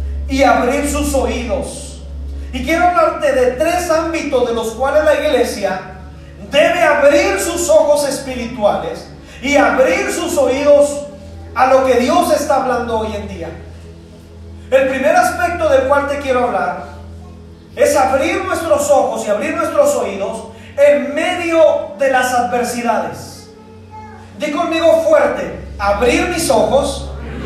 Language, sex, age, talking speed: Spanish, male, 40-59, 130 wpm